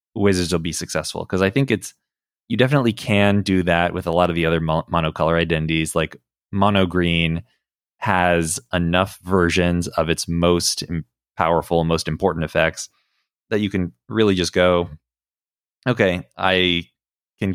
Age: 20-39